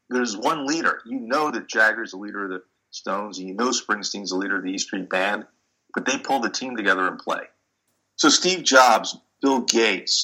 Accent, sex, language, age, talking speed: American, male, English, 50-69, 210 wpm